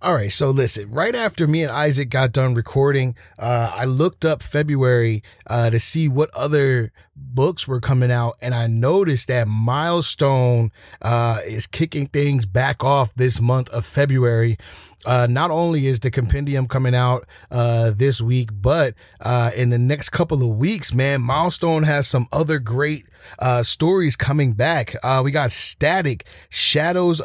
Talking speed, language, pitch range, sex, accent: 165 wpm, English, 120-150 Hz, male, American